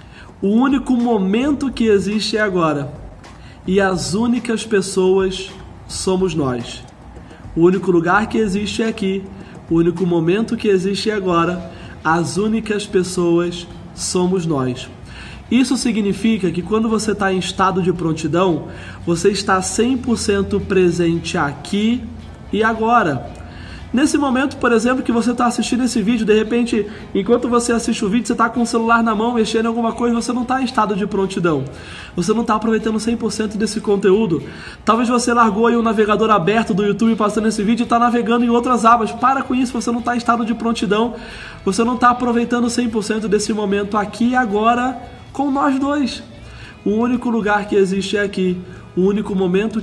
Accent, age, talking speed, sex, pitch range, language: Brazilian, 20-39, 170 wpm, male, 185-235 Hz, Portuguese